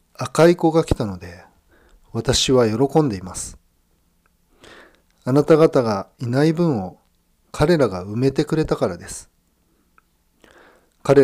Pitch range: 95-145 Hz